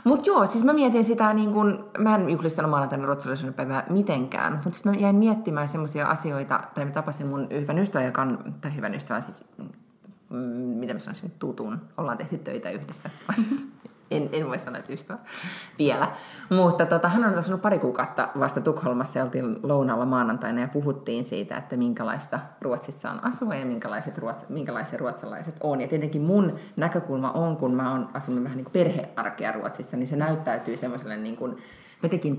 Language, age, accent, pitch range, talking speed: Finnish, 20-39, native, 130-190 Hz, 175 wpm